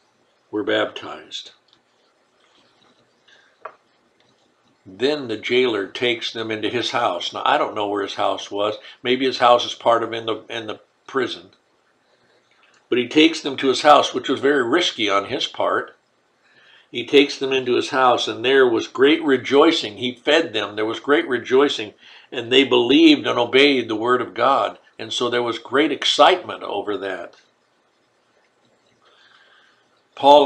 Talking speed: 155 wpm